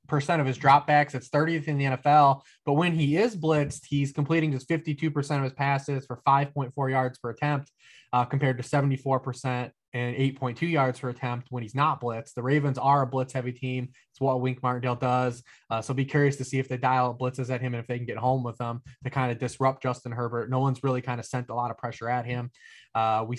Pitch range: 125-145 Hz